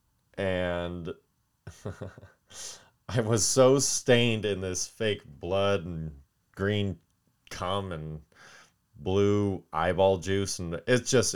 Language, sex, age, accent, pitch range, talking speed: English, male, 30-49, American, 85-110 Hz, 100 wpm